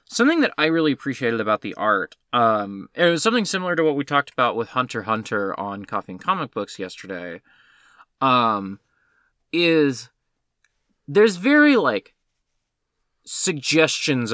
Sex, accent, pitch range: male, American, 130-180 Hz